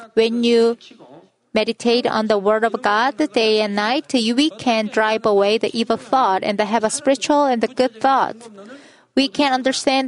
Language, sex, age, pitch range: Korean, female, 30-49, 215-265 Hz